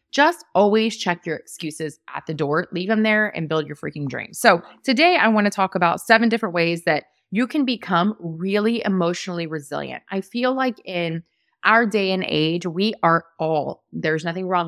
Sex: female